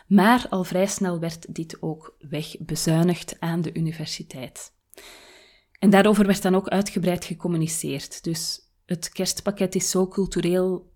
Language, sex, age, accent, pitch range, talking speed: Dutch, female, 30-49, Belgian, 165-195 Hz, 130 wpm